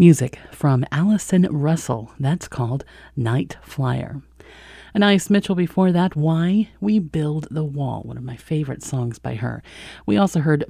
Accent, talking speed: American, 155 wpm